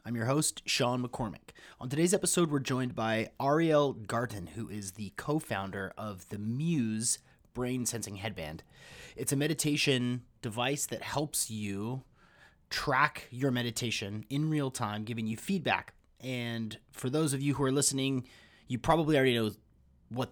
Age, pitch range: 30-49, 115-150 Hz